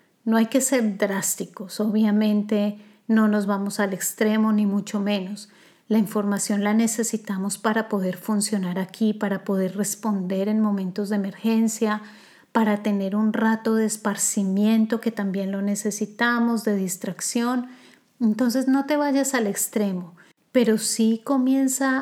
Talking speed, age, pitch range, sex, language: 135 wpm, 30-49, 200-230 Hz, female, Spanish